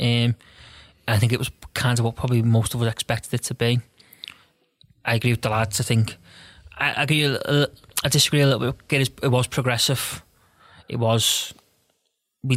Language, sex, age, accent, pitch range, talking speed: English, male, 20-39, British, 115-125 Hz, 185 wpm